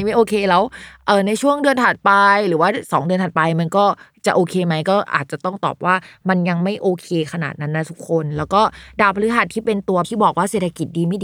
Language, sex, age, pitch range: Thai, female, 20-39, 160-210 Hz